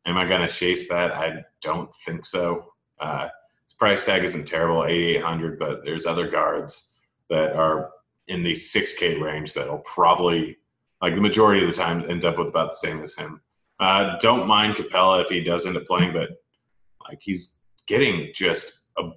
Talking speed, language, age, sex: 190 wpm, English, 30-49, male